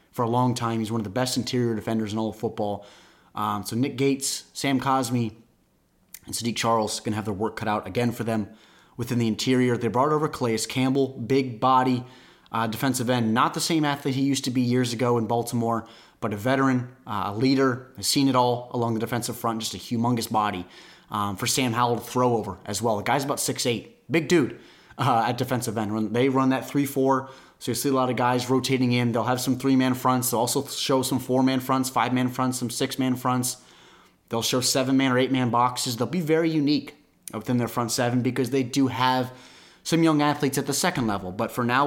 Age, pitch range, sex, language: 30-49, 115-135 Hz, male, English